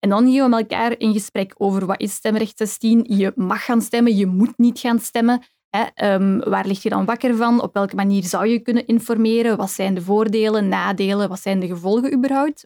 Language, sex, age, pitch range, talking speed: Dutch, female, 10-29, 195-240 Hz, 220 wpm